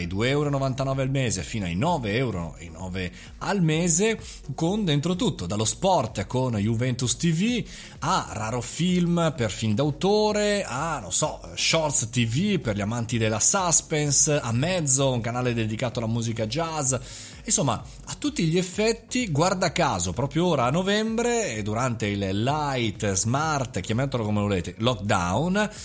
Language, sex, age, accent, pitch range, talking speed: Italian, male, 30-49, native, 105-155 Hz, 140 wpm